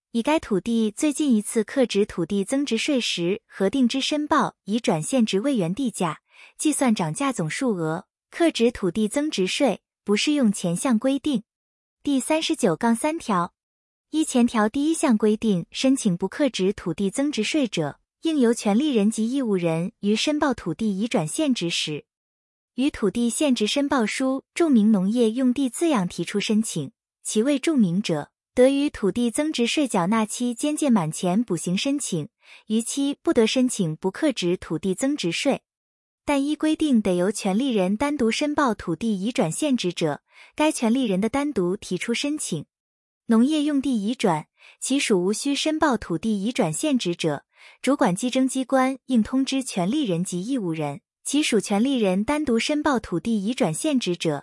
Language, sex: Chinese, female